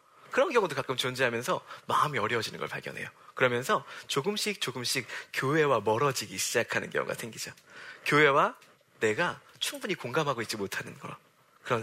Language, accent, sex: Korean, native, male